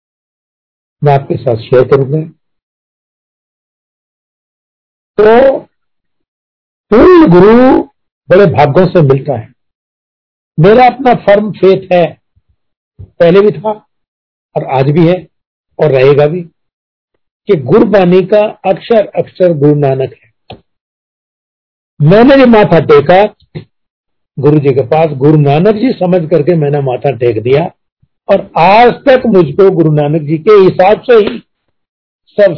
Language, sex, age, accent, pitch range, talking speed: Hindi, male, 60-79, native, 145-210 Hz, 120 wpm